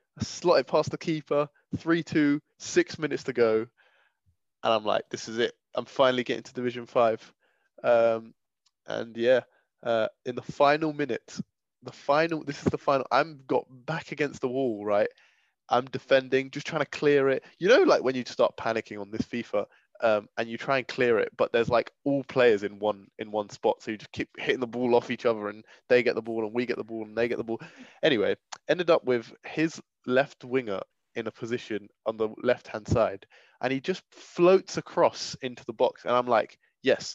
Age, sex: 20-39, male